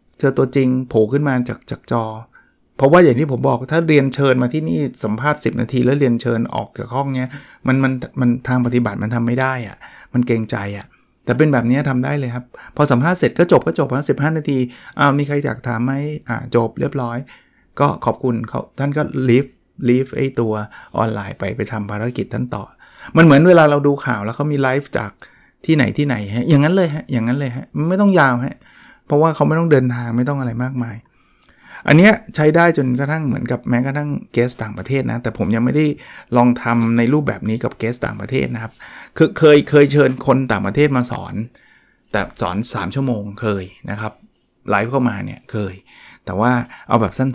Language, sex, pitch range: Thai, male, 120-145 Hz